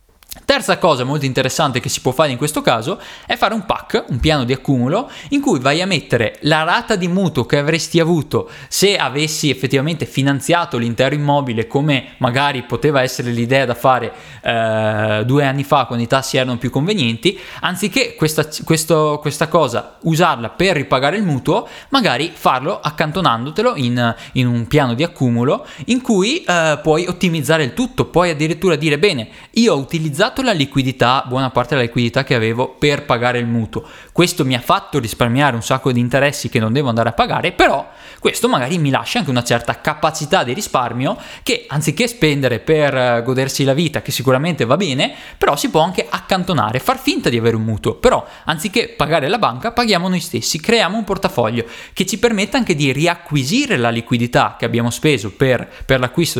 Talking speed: 180 wpm